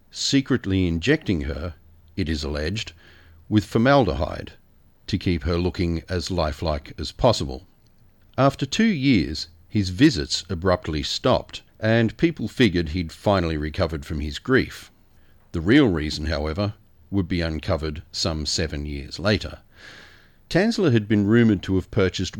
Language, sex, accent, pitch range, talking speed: English, male, Australian, 80-110 Hz, 135 wpm